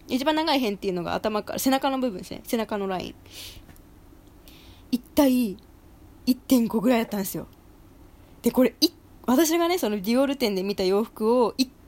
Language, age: Japanese, 20-39